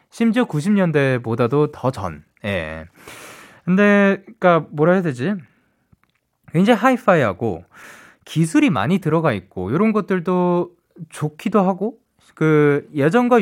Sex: male